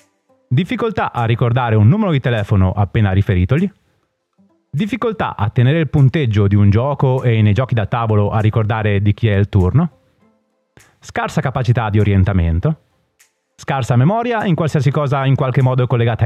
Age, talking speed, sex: 30-49, 155 wpm, male